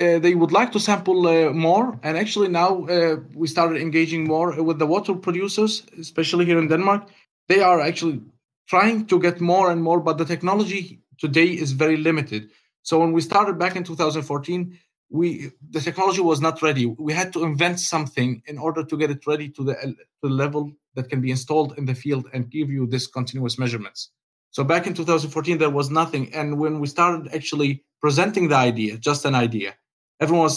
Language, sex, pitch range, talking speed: English, male, 140-170 Hz, 200 wpm